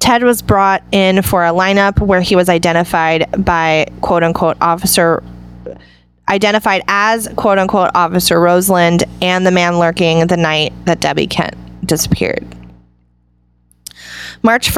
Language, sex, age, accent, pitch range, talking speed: English, female, 20-39, American, 165-205 Hz, 125 wpm